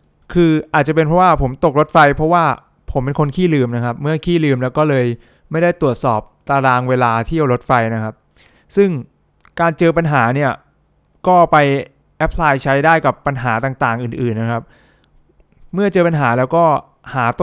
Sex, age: male, 20-39